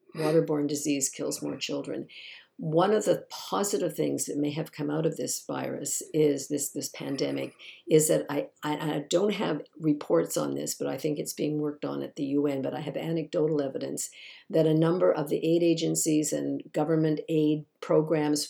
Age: 50-69